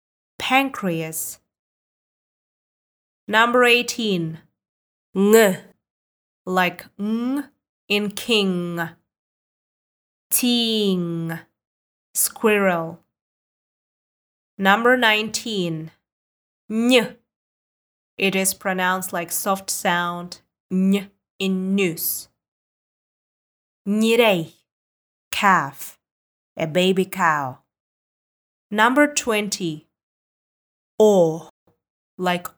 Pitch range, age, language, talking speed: 170-225 Hz, 20-39, English, 55 wpm